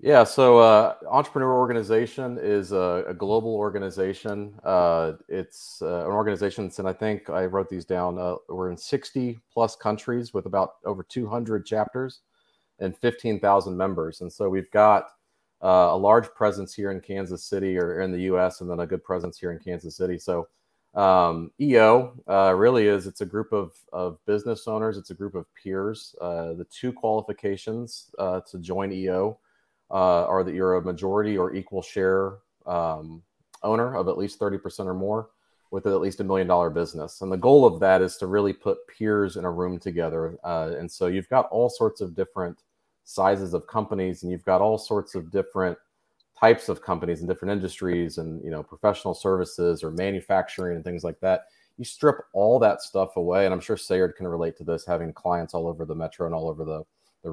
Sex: male